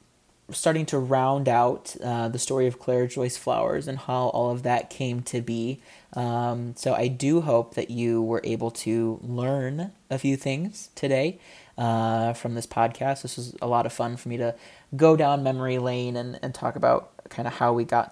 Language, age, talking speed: English, 20-39, 200 wpm